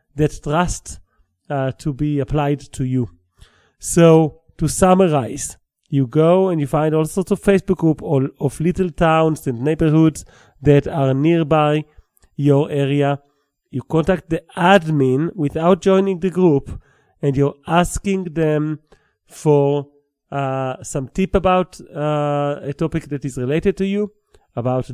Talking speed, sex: 140 wpm, male